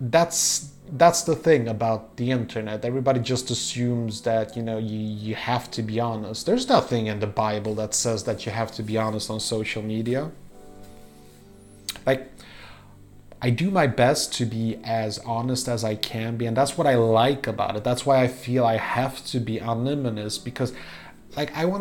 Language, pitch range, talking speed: English, 105-135 Hz, 185 wpm